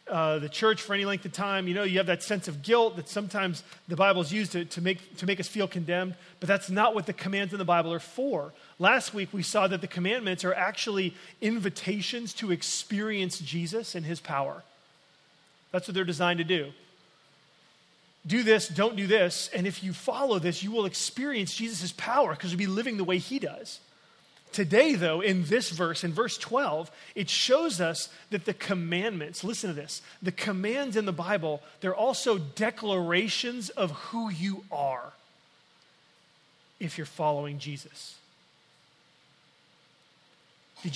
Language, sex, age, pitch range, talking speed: English, male, 30-49, 170-210 Hz, 175 wpm